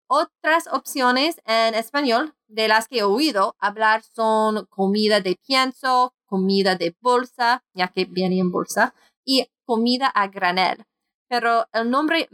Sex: female